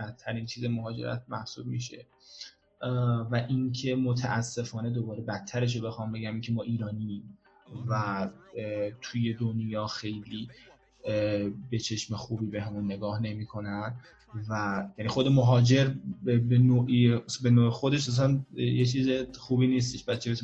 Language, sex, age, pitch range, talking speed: Persian, male, 20-39, 105-125 Hz, 125 wpm